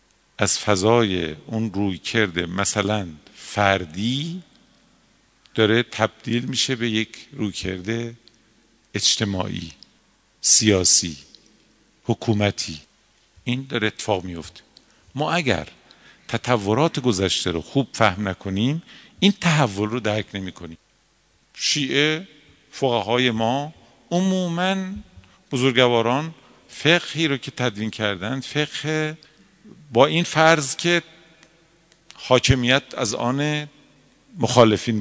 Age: 50-69